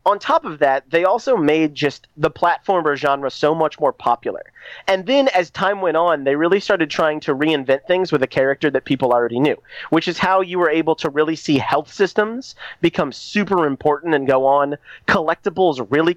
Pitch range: 135-175 Hz